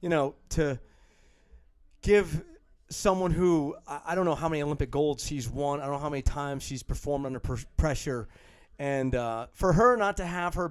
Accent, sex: American, male